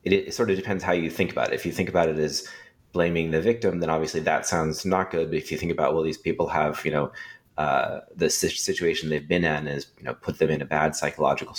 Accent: American